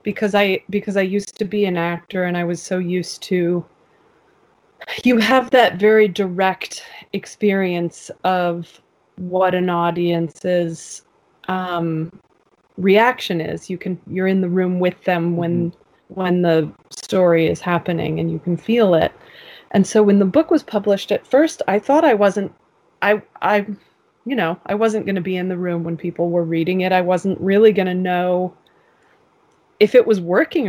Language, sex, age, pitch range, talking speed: English, female, 20-39, 175-210 Hz, 170 wpm